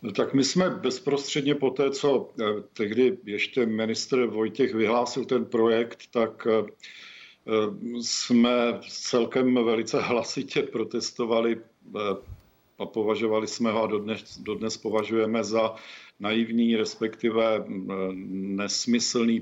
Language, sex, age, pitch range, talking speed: Czech, male, 50-69, 105-120 Hz, 100 wpm